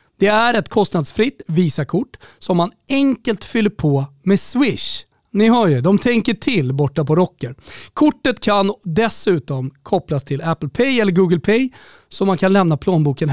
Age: 30-49